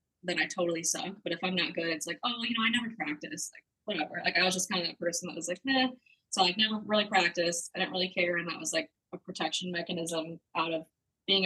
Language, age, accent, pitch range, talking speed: English, 20-39, American, 170-195 Hz, 260 wpm